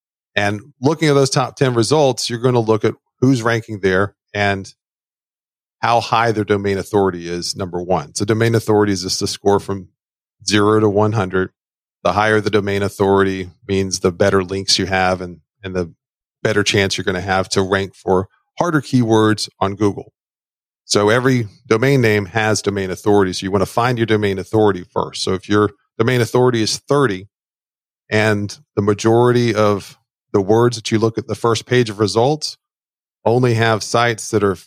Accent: American